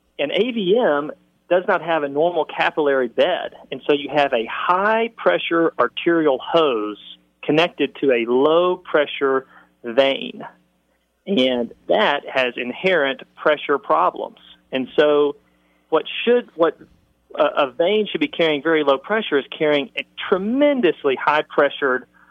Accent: American